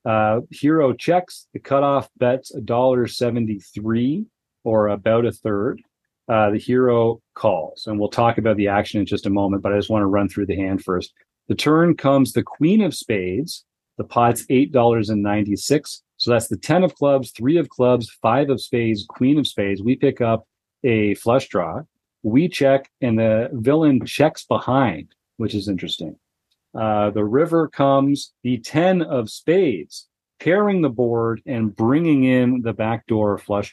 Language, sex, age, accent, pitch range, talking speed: English, male, 40-59, American, 110-135 Hz, 175 wpm